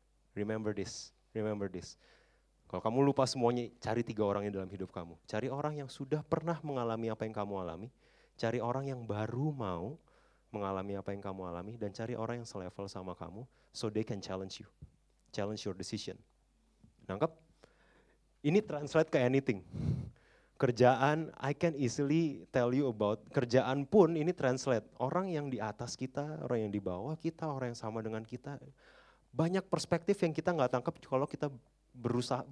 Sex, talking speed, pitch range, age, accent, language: male, 165 wpm, 100-140 Hz, 30-49, native, Indonesian